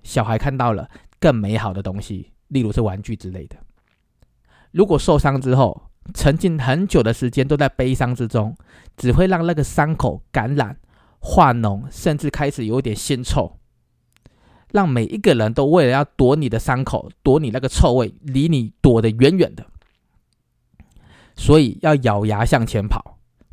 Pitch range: 105-140 Hz